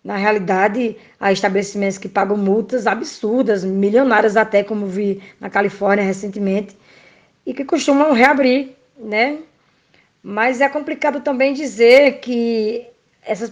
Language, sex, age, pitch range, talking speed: Portuguese, female, 20-39, 205-240 Hz, 120 wpm